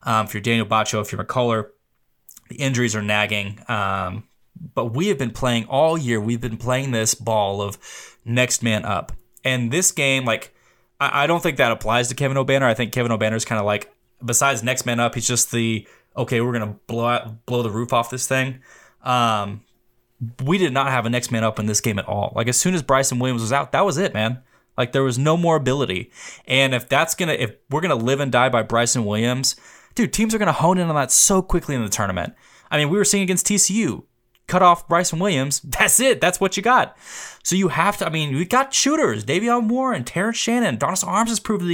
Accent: American